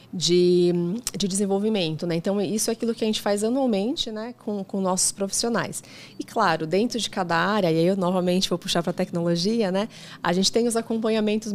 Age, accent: 20-39, Brazilian